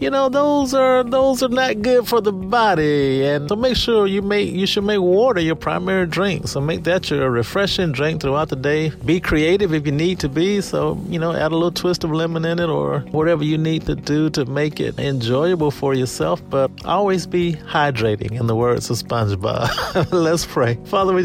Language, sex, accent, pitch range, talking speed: English, male, American, 130-175 Hz, 215 wpm